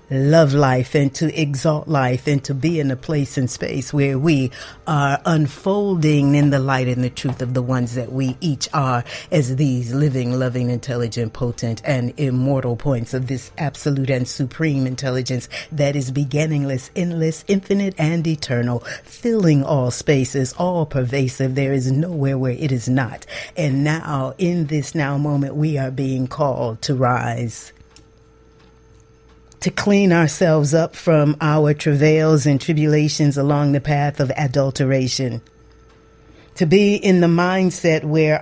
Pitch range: 135-165 Hz